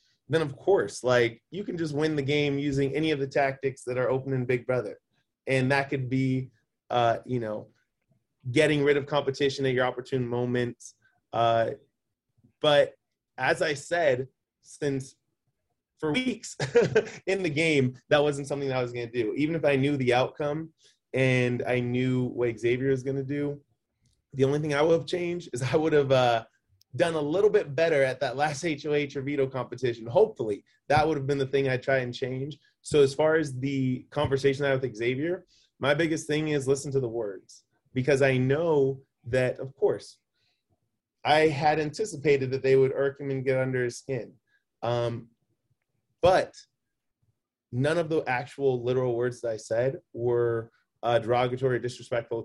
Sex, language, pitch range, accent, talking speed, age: male, English, 125-150 Hz, American, 180 wpm, 20-39